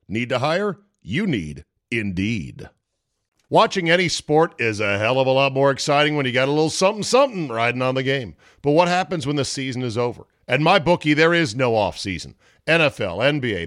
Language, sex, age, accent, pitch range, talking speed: English, male, 50-69, American, 115-165 Hz, 195 wpm